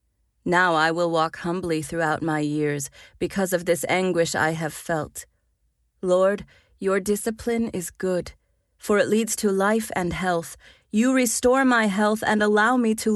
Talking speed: 160 wpm